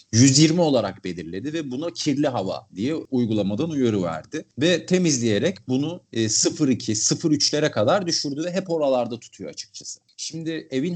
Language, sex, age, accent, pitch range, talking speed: Turkish, male, 40-59, native, 105-155 Hz, 135 wpm